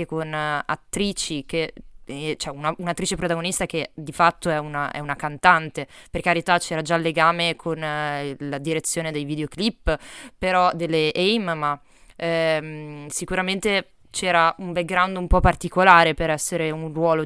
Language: Italian